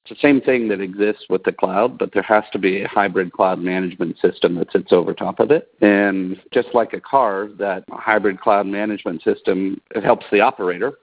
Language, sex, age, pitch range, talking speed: English, male, 50-69, 95-110 Hz, 210 wpm